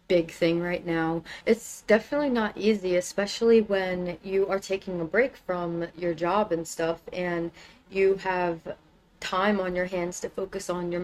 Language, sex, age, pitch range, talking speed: English, female, 30-49, 175-205 Hz, 170 wpm